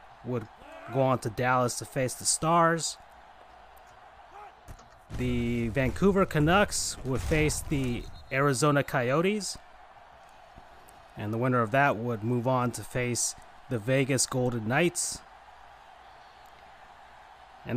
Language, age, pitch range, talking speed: English, 30-49, 120-165 Hz, 110 wpm